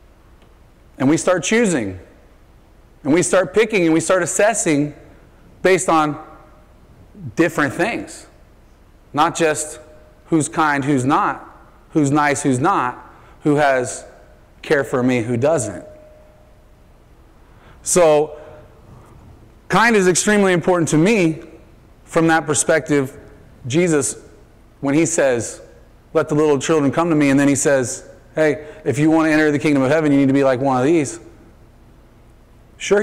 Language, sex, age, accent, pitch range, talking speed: English, male, 30-49, American, 135-185 Hz, 140 wpm